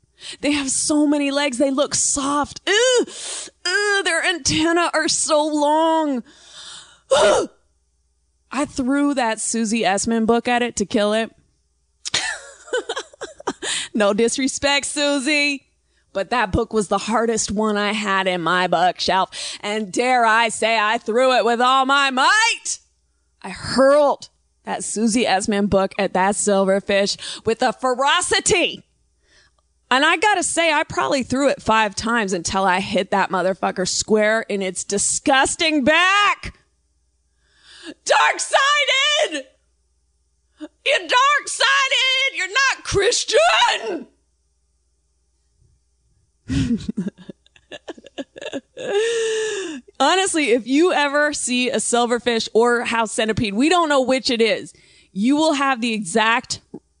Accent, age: American, 20-39